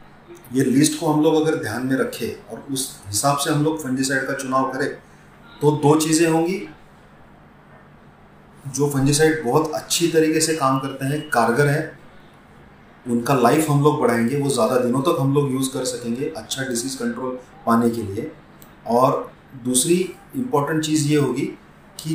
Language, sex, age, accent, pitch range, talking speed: Hindi, male, 30-49, native, 130-155 Hz, 170 wpm